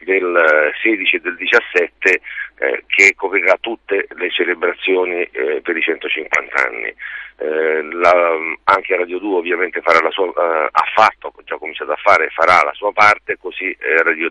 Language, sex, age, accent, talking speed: Italian, male, 50-69, native, 170 wpm